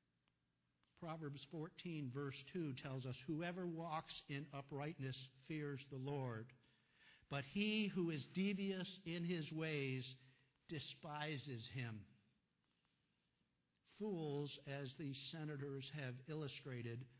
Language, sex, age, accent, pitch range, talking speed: English, male, 60-79, American, 130-185 Hz, 100 wpm